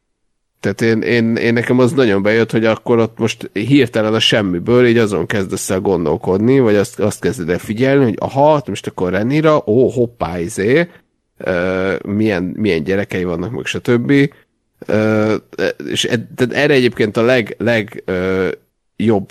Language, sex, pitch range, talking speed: Hungarian, male, 100-125 Hz, 150 wpm